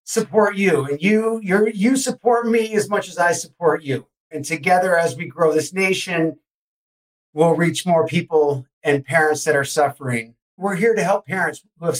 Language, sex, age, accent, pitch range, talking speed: English, male, 50-69, American, 150-190 Hz, 185 wpm